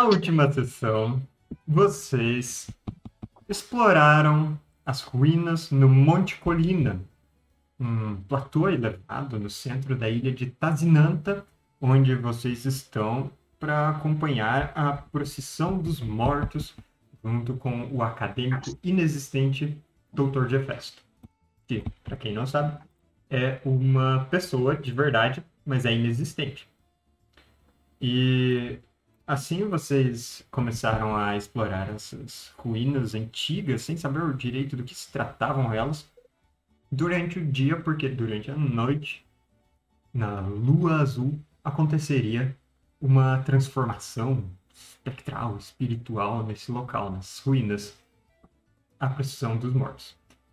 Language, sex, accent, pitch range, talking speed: Portuguese, male, Brazilian, 115-145 Hz, 105 wpm